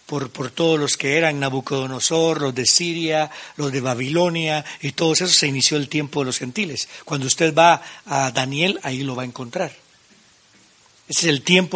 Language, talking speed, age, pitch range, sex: Spanish, 190 wpm, 60-79, 145-190 Hz, male